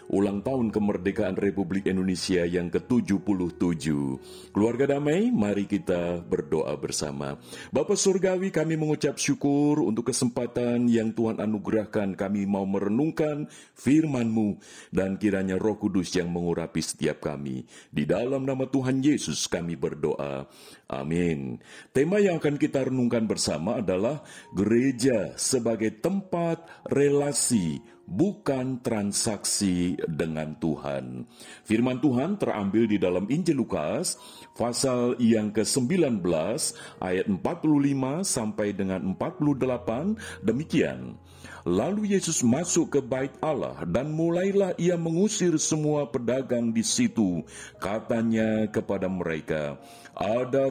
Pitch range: 100-145 Hz